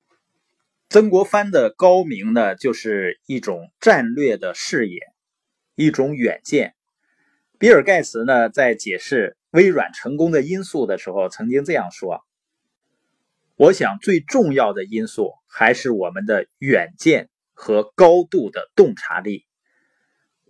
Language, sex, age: Chinese, male, 20-39